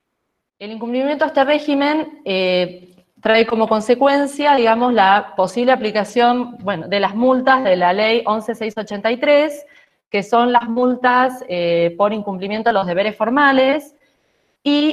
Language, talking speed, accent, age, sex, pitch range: Spanish, 135 wpm, Argentinian, 20-39, female, 205-265 Hz